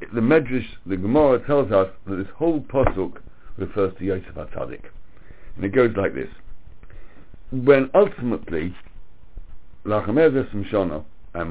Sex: male